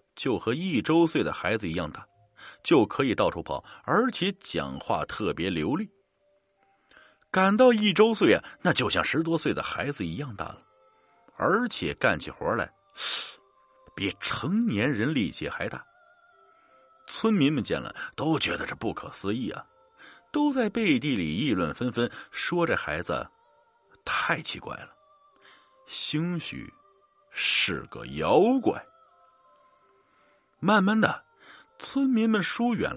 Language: Chinese